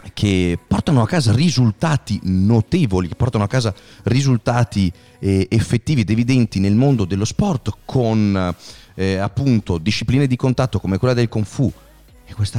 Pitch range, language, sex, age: 95-125 Hz, Italian, male, 30-49